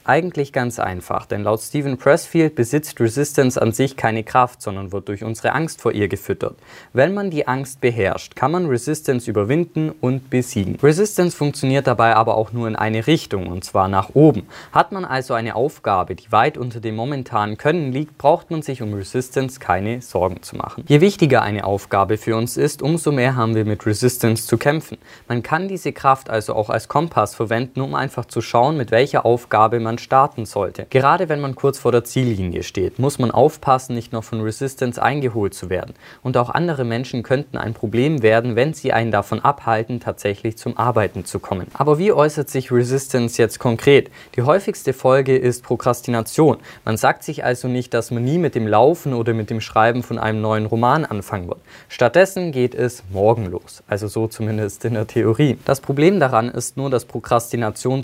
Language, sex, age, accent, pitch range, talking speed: German, male, 20-39, German, 110-140 Hz, 195 wpm